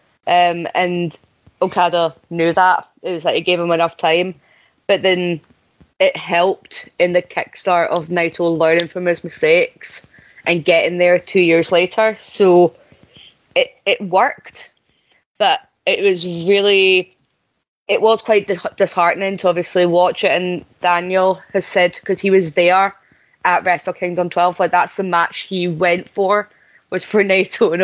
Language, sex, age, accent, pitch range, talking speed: English, female, 20-39, British, 175-200 Hz, 155 wpm